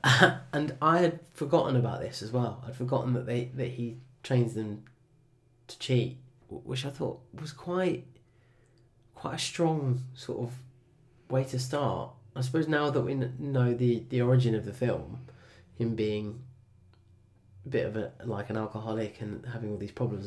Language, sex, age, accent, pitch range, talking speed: English, male, 20-39, British, 105-125 Hz, 170 wpm